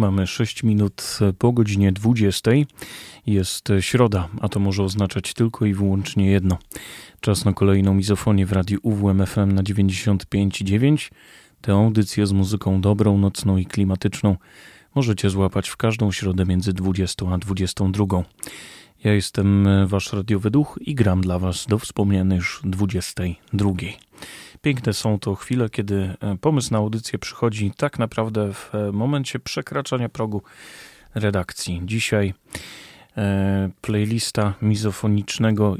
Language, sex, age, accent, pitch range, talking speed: Polish, male, 30-49, native, 95-115 Hz, 125 wpm